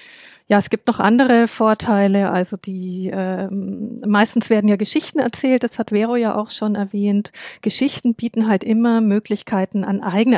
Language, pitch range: English, 190-225 Hz